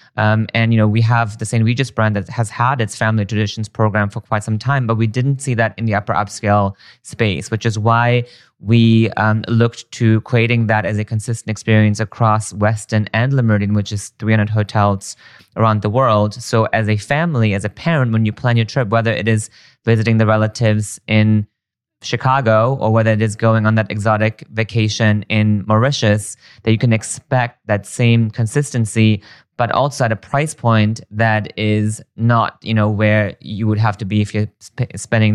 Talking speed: 195 wpm